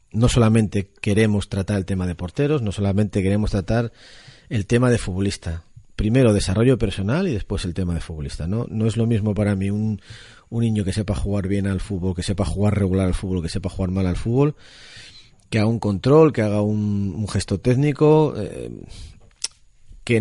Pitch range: 95-115 Hz